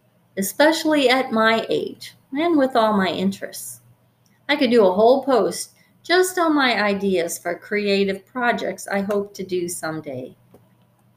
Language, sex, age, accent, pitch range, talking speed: English, female, 40-59, American, 180-230 Hz, 145 wpm